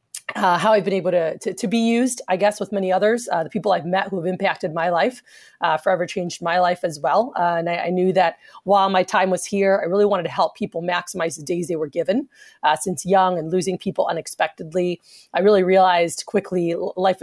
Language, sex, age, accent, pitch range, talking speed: English, female, 30-49, American, 170-195 Hz, 235 wpm